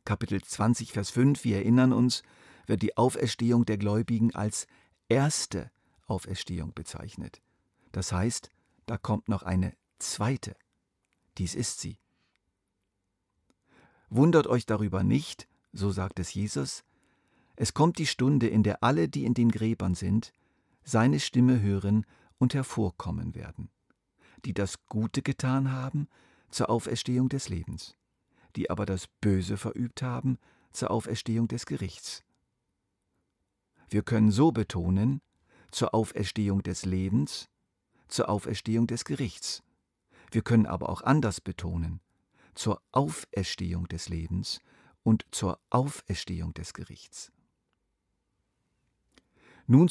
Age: 50-69